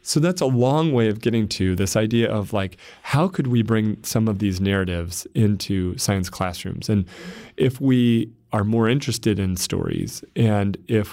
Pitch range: 100-120 Hz